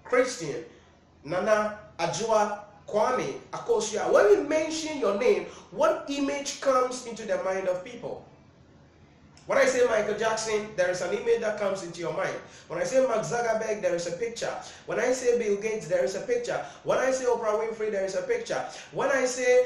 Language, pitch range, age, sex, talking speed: English, 195-275 Hz, 30-49, male, 190 wpm